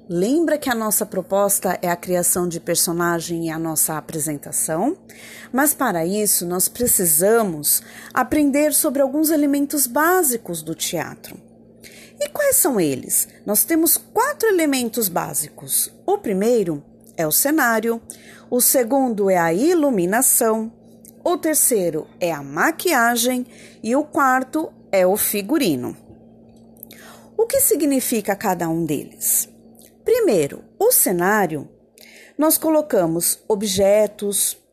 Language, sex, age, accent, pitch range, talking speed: Portuguese, female, 40-59, Brazilian, 200-305 Hz, 120 wpm